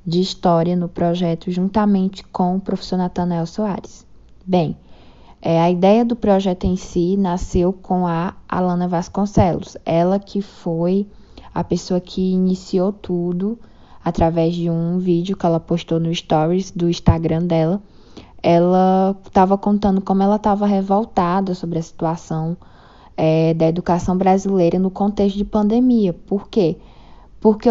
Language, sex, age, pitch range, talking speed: Portuguese, female, 10-29, 175-205 Hz, 140 wpm